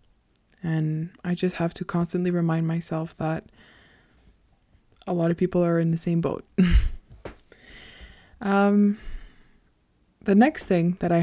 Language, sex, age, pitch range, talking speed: English, female, 20-39, 170-200 Hz, 130 wpm